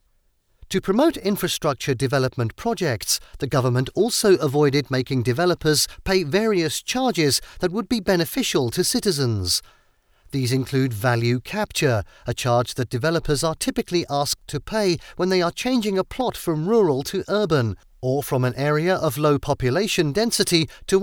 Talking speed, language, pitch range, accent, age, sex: 150 wpm, English, 130-195 Hz, British, 40-59, male